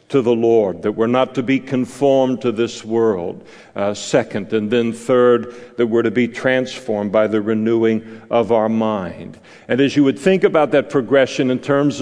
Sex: male